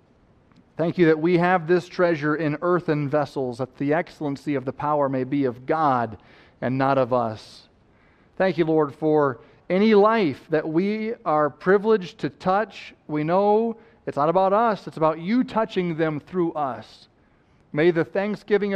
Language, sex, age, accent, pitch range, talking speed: English, male, 40-59, American, 135-170 Hz, 165 wpm